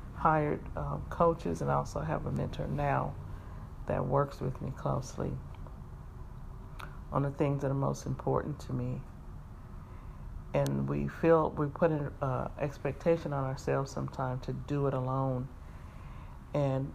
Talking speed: 140 wpm